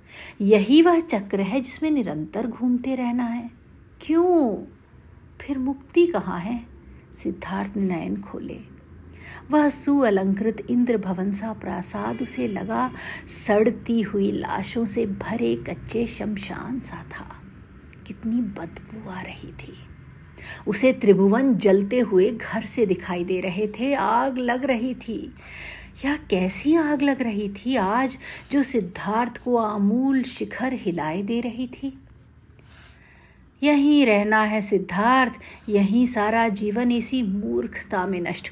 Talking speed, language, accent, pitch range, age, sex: 125 wpm, Hindi, native, 200-260 Hz, 50-69, female